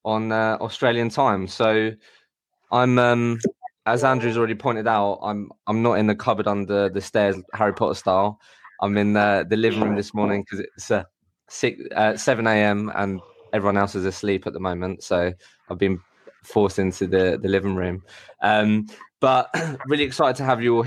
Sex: male